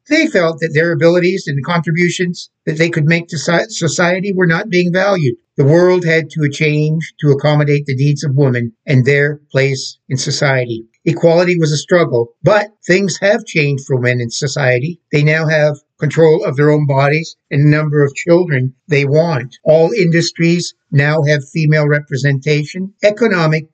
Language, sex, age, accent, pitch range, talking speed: English, male, 60-79, American, 145-170 Hz, 170 wpm